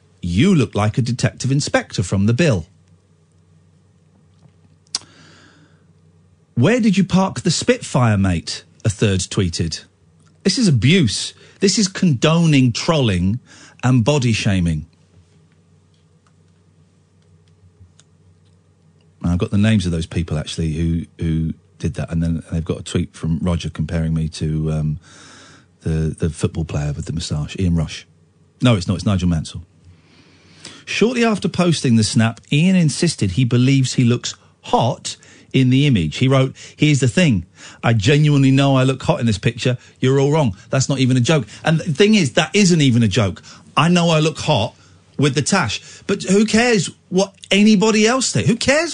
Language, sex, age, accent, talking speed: English, male, 40-59, British, 160 wpm